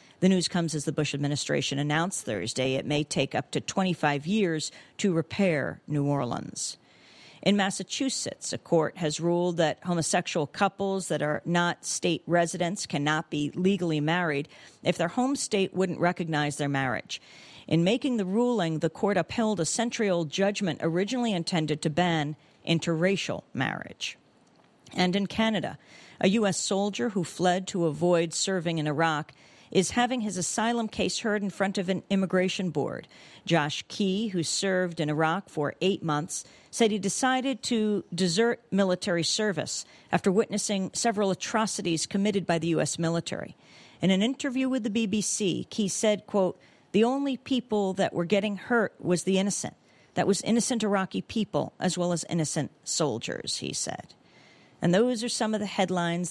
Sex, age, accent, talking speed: female, 50-69, American, 160 wpm